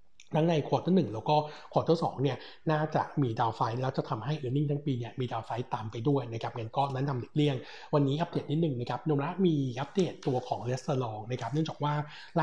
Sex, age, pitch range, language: male, 60-79, 125-155 Hz, Thai